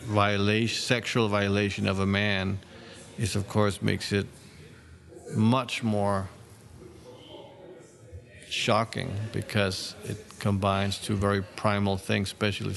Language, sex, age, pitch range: German, male, 40-59, 100-115 Hz